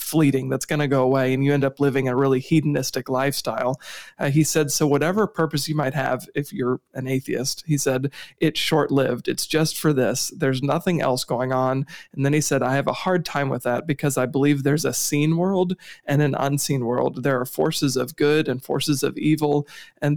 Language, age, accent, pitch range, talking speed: English, 40-59, American, 135-155 Hz, 220 wpm